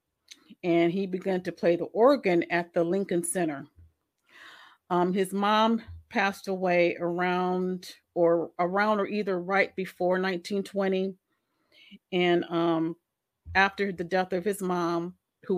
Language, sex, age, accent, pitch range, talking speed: English, female, 40-59, American, 170-195 Hz, 125 wpm